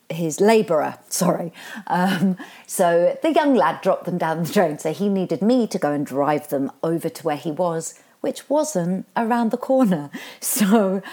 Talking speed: 180 wpm